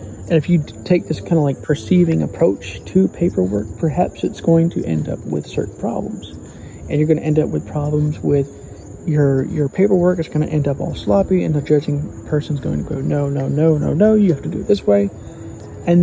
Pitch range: 130-160 Hz